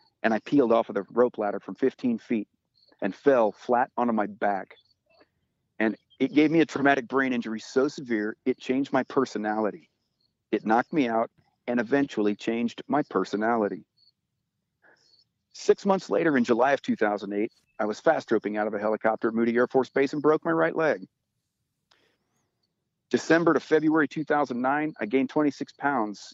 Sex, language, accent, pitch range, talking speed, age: male, English, American, 110-150 Hz, 165 wpm, 50-69